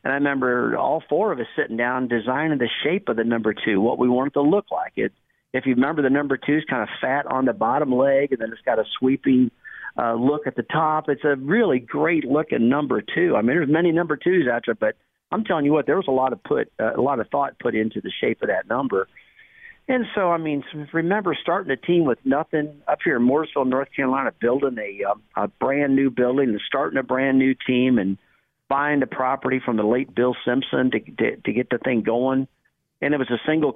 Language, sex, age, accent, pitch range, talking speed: English, male, 50-69, American, 120-145 Hz, 245 wpm